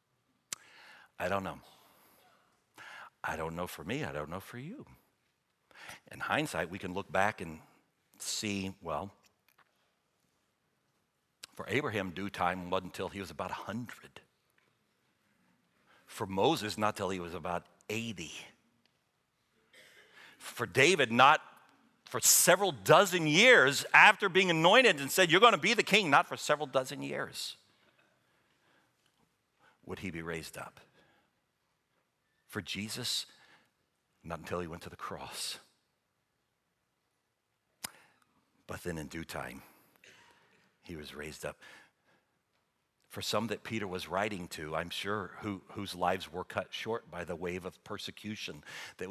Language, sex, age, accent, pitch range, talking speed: English, male, 60-79, American, 90-125 Hz, 130 wpm